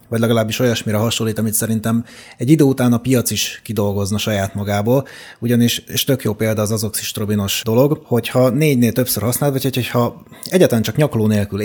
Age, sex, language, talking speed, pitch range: 30-49, male, Hungarian, 170 wpm, 105-130 Hz